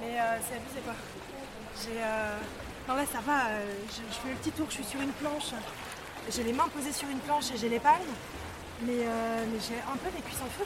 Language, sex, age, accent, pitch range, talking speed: French, female, 20-39, French, 215-260 Hz, 250 wpm